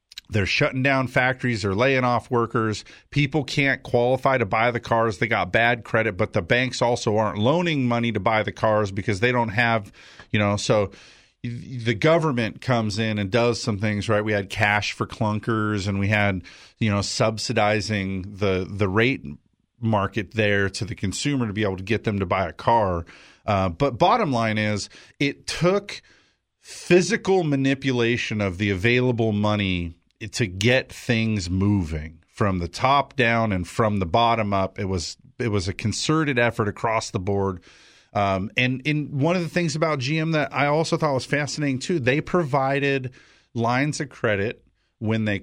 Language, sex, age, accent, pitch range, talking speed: English, male, 40-59, American, 105-145 Hz, 175 wpm